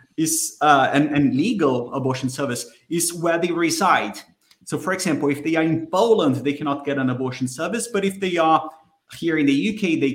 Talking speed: 200 wpm